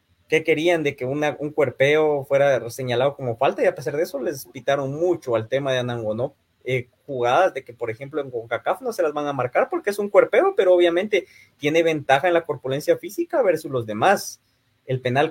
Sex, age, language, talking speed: male, 20-39, Spanish, 210 wpm